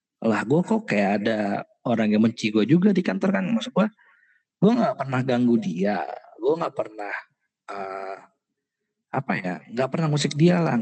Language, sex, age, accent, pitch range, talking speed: Indonesian, male, 20-39, native, 120-180 Hz, 165 wpm